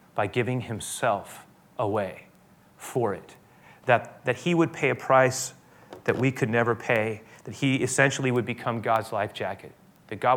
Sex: male